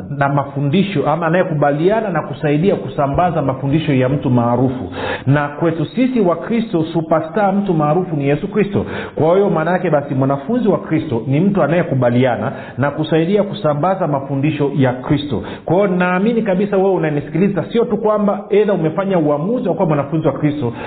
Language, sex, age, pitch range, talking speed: Swahili, male, 40-59, 140-190 Hz, 160 wpm